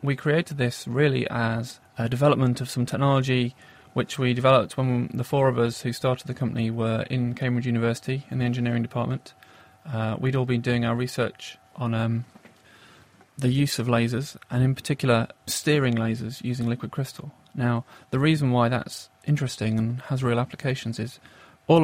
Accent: British